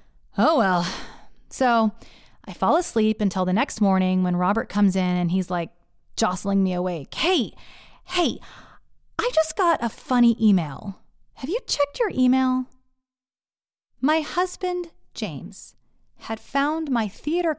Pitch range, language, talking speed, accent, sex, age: 215-345 Hz, English, 135 wpm, American, female, 30-49